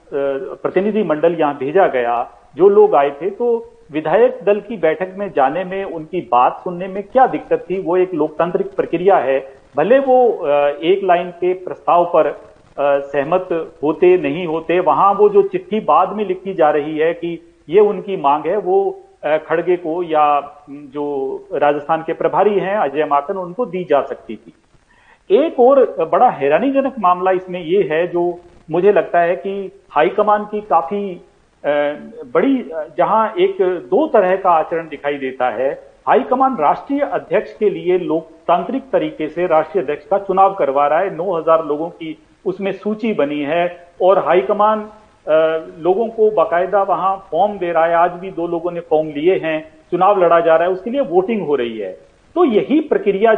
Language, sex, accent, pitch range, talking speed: Hindi, male, native, 160-225 Hz, 175 wpm